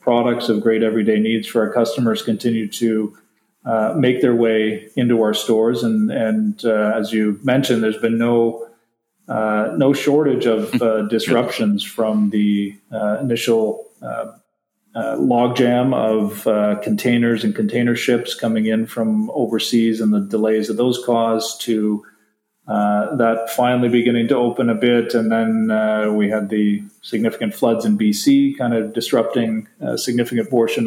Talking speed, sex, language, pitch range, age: 155 wpm, male, English, 110-120 Hz, 40-59